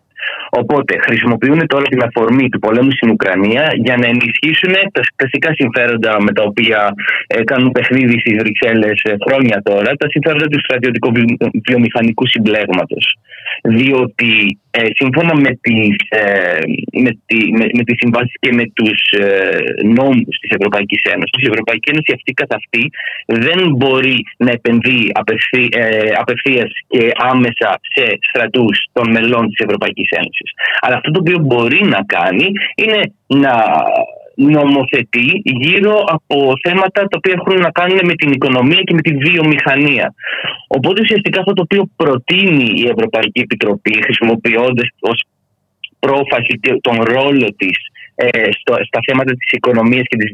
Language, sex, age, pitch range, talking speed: Greek, male, 30-49, 115-150 Hz, 140 wpm